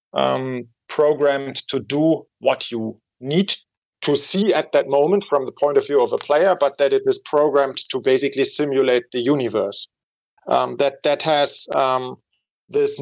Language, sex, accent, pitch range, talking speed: English, male, German, 135-185 Hz, 165 wpm